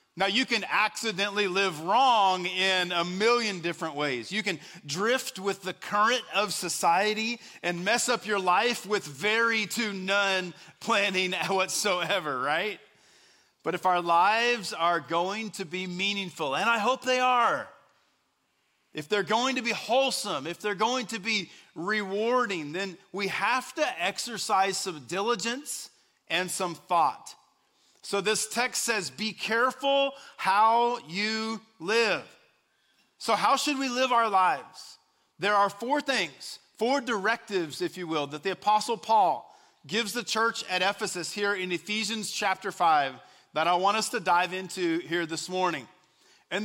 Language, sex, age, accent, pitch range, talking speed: English, male, 40-59, American, 185-230 Hz, 150 wpm